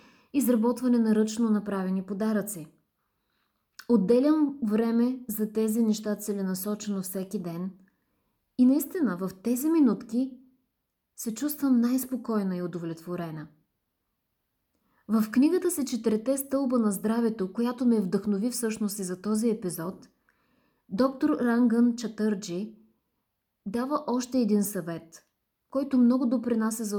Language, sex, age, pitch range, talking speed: Bulgarian, female, 20-39, 205-255 Hz, 110 wpm